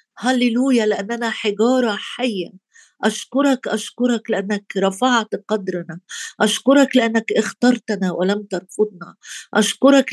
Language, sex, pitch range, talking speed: Arabic, female, 200-240 Hz, 90 wpm